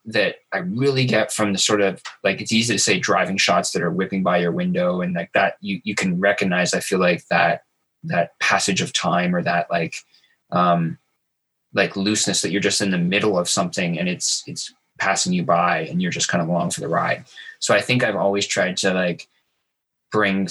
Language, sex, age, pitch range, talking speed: English, male, 20-39, 95-115 Hz, 215 wpm